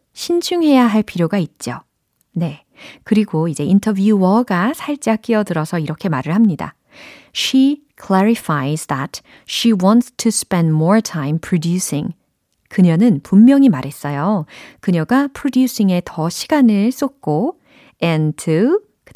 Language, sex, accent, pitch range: Korean, female, native, 160-255 Hz